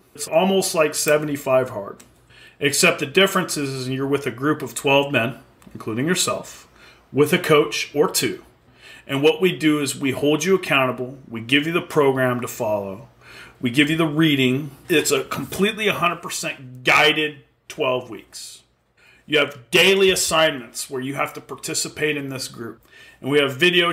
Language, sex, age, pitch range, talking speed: English, male, 40-59, 130-165 Hz, 170 wpm